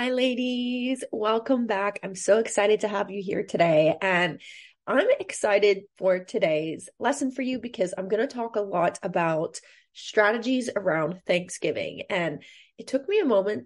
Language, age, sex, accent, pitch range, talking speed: English, 20-39, female, American, 190-280 Hz, 165 wpm